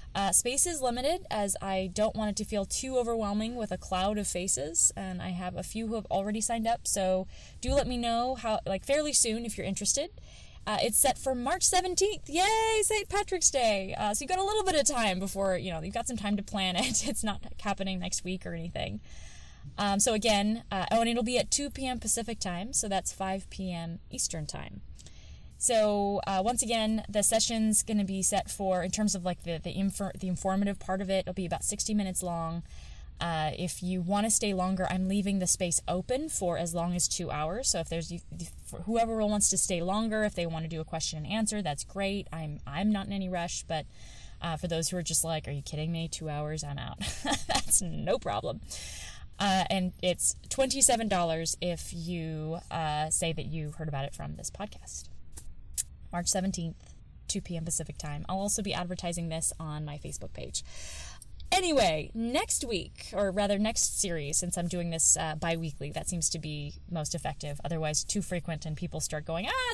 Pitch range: 160-215 Hz